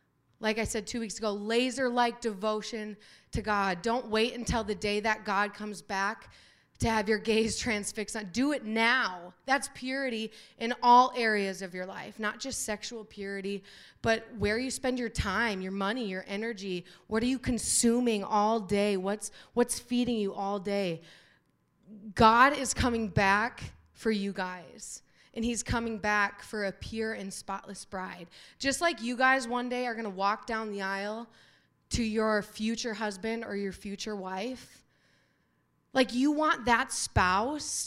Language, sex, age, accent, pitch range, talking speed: English, female, 20-39, American, 205-240 Hz, 165 wpm